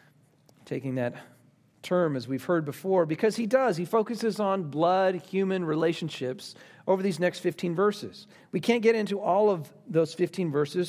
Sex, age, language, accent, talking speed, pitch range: male, 40-59, English, American, 165 wpm, 145-200 Hz